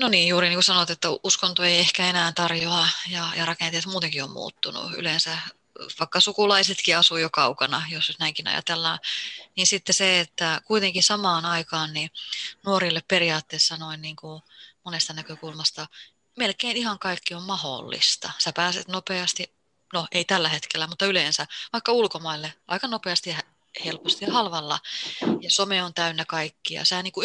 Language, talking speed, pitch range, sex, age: Finnish, 150 wpm, 165-200 Hz, female, 20-39